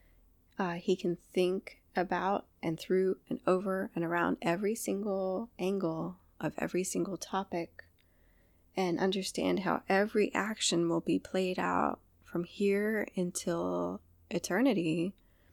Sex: female